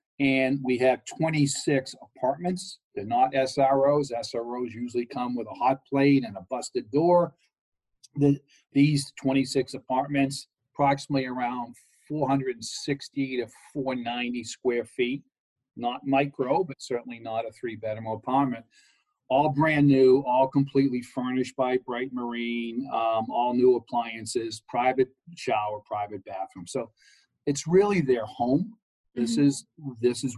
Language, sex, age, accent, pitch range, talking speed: English, male, 40-59, American, 115-140 Hz, 125 wpm